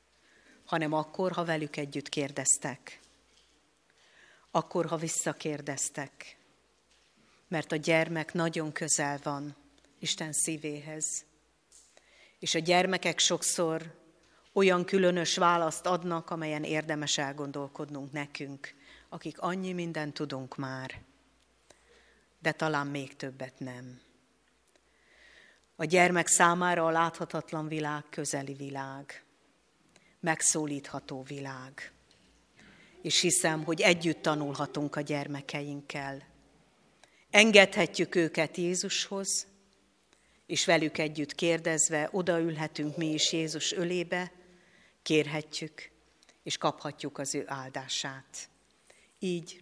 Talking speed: 90 wpm